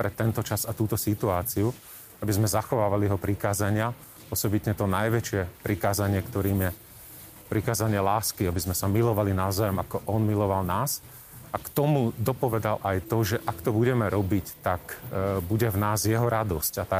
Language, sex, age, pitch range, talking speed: Slovak, male, 30-49, 100-120 Hz, 165 wpm